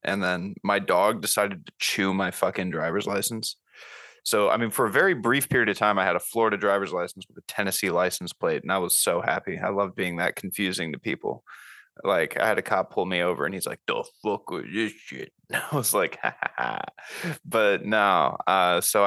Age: 20-39